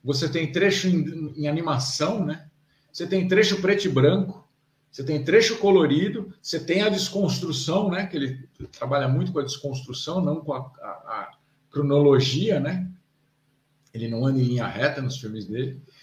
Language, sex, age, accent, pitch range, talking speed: Portuguese, male, 50-69, Brazilian, 135-175 Hz, 170 wpm